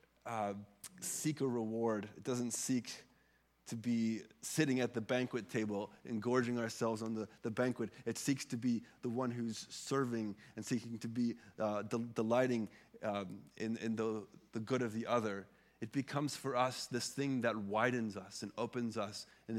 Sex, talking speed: male, 175 wpm